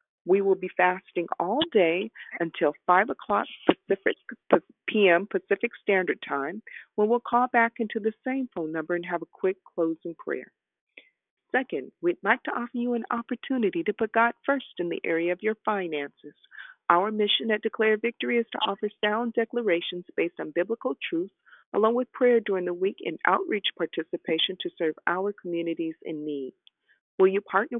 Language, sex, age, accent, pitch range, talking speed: English, female, 40-59, American, 170-235 Hz, 170 wpm